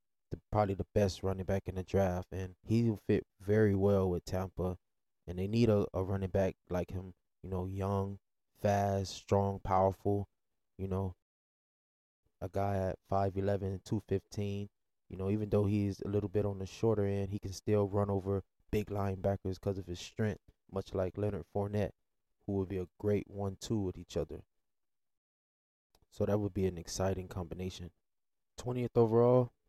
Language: English